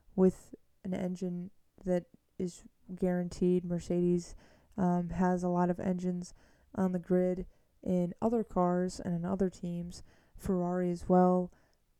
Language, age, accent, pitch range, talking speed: English, 20-39, American, 175-190 Hz, 130 wpm